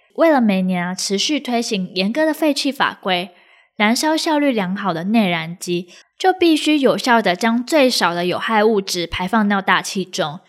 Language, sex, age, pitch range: Chinese, female, 10-29, 195-265 Hz